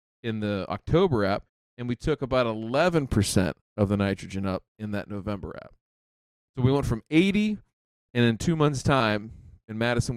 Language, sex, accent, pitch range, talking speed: English, male, American, 105-140 Hz, 170 wpm